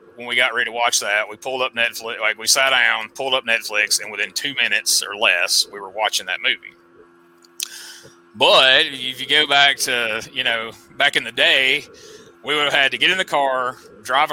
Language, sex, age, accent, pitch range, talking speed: English, male, 30-49, American, 110-145 Hz, 215 wpm